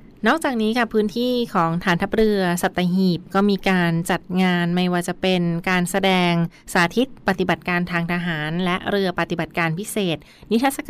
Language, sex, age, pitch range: Thai, female, 20-39, 170-200 Hz